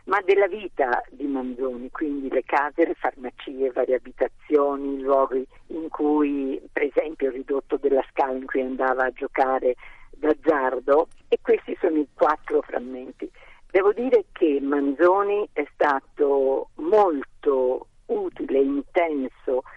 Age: 50-69